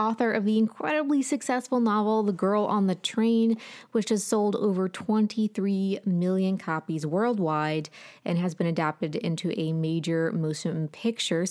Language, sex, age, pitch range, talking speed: English, female, 20-39, 170-215 Hz, 145 wpm